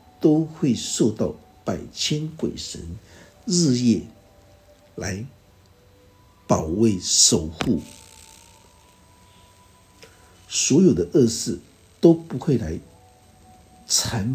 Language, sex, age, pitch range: Chinese, male, 60-79, 90-125 Hz